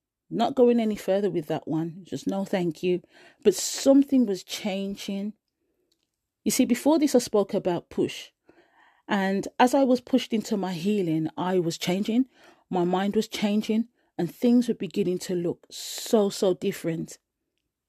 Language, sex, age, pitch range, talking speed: English, female, 40-59, 175-245 Hz, 160 wpm